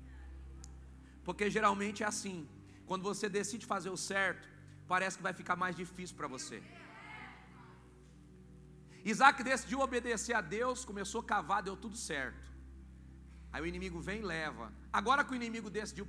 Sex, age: male, 40-59